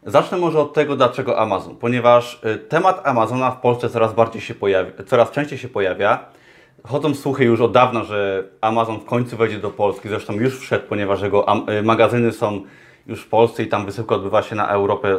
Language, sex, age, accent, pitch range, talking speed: Polish, male, 30-49, native, 110-135 Hz, 190 wpm